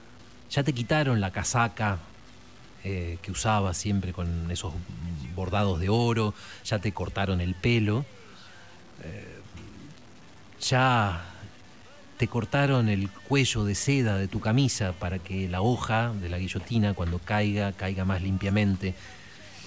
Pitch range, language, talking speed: 95-115 Hz, Spanish, 130 wpm